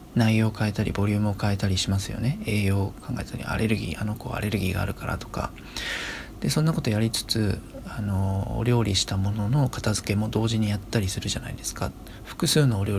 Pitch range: 100-125 Hz